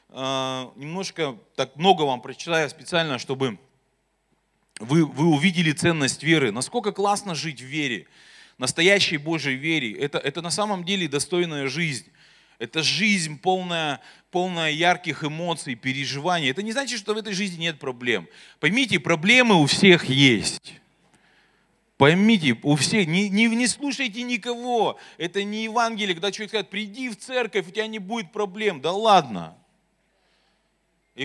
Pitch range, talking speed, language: 165-235 Hz, 140 wpm, Russian